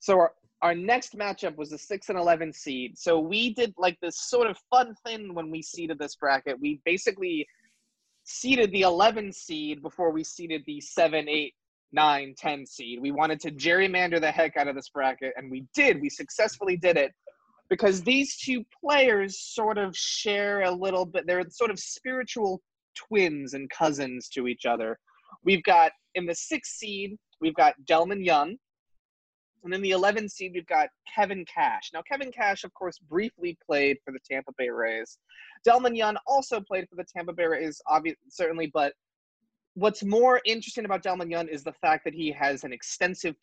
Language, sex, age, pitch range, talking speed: English, male, 20-39, 150-215 Hz, 185 wpm